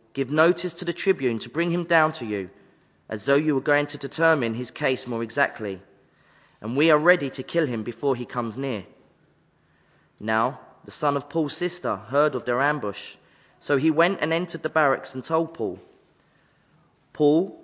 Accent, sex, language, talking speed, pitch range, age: British, male, English, 185 wpm, 125-165 Hz, 30-49